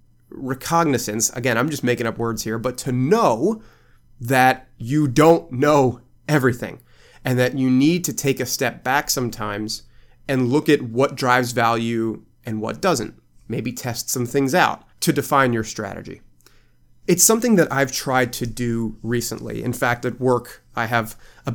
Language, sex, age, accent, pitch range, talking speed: English, male, 30-49, American, 115-135 Hz, 165 wpm